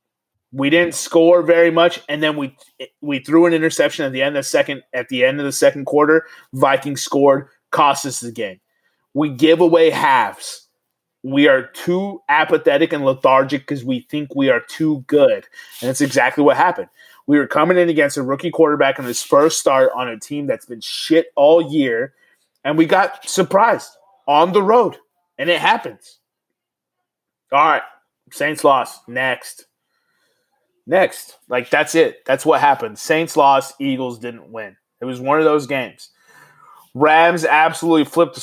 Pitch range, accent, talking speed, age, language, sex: 130-170 Hz, American, 170 wpm, 30-49, English, male